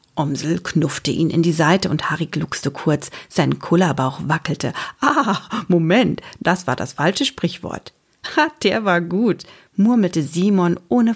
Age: 50-69